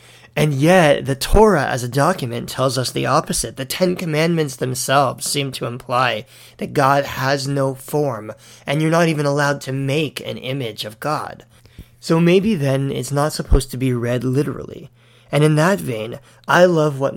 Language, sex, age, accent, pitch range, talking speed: English, male, 30-49, American, 125-155 Hz, 180 wpm